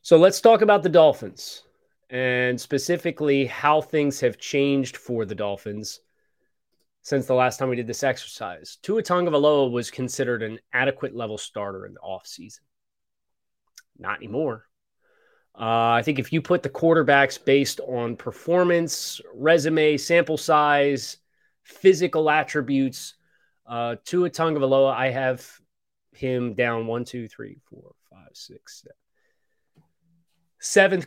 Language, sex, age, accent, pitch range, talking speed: English, male, 30-49, American, 115-150 Hz, 130 wpm